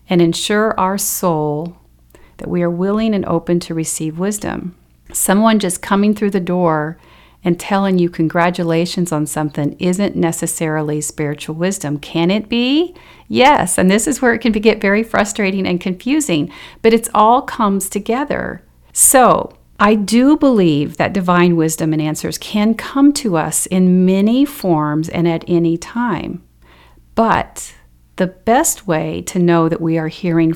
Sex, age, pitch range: female, 40-59, 165-205 Hz